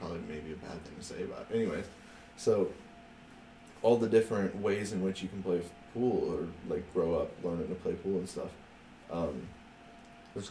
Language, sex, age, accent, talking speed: English, male, 20-39, American, 190 wpm